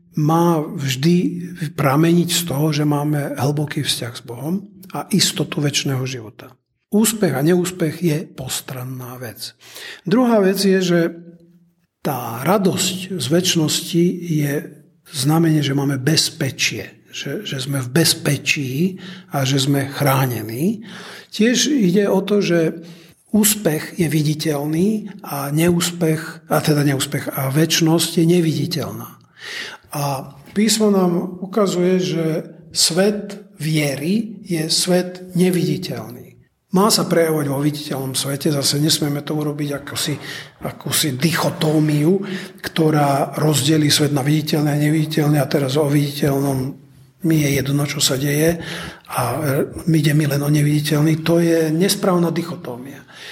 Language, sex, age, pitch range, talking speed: Czech, male, 50-69, 145-180 Hz, 125 wpm